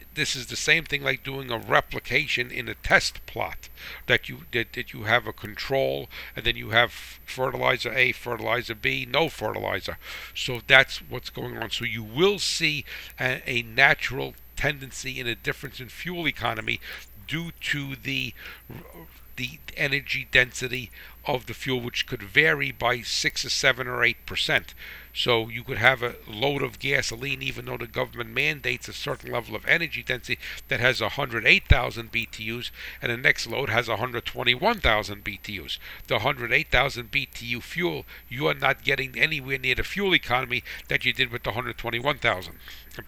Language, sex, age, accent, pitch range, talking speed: English, male, 60-79, American, 115-140 Hz, 165 wpm